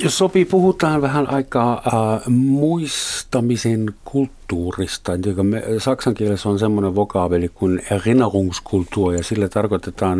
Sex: male